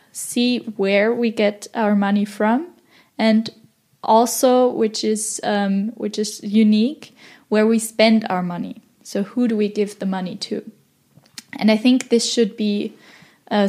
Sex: female